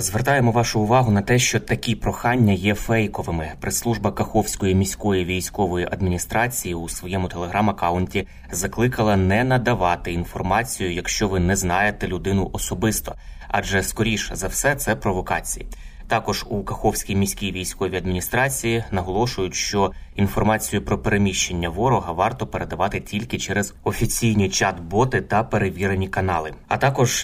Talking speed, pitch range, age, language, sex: 125 wpm, 90-110 Hz, 20-39, Ukrainian, male